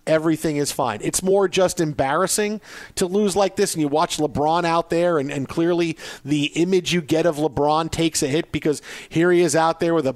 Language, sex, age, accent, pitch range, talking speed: English, male, 50-69, American, 140-175 Hz, 220 wpm